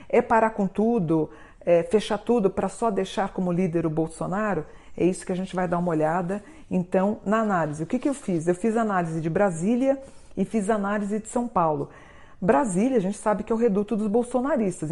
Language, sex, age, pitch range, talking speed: Portuguese, female, 50-69, 175-220 Hz, 210 wpm